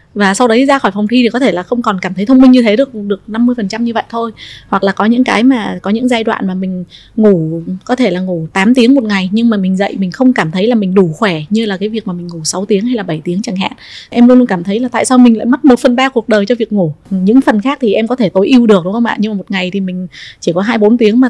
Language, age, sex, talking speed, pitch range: Vietnamese, 20-39, female, 320 wpm, 190-240 Hz